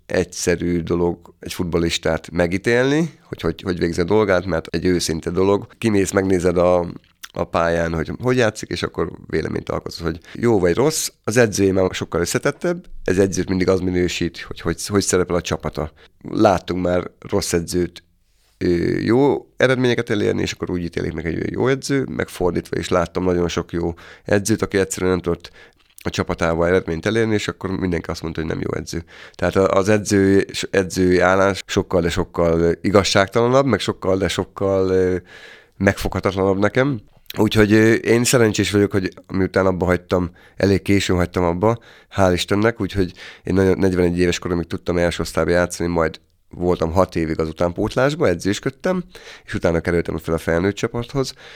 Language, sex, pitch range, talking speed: Hungarian, male, 85-105 Hz, 160 wpm